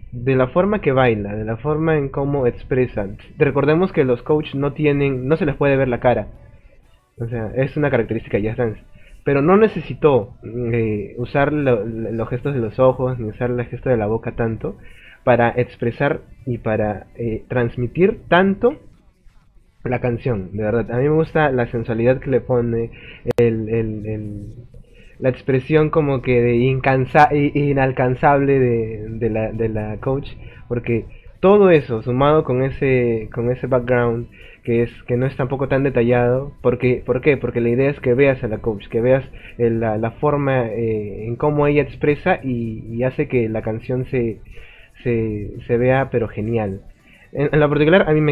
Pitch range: 115-145 Hz